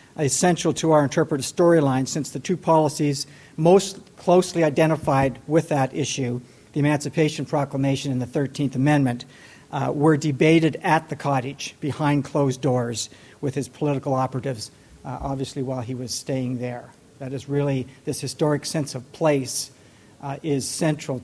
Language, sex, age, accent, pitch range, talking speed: English, male, 60-79, American, 135-150 Hz, 150 wpm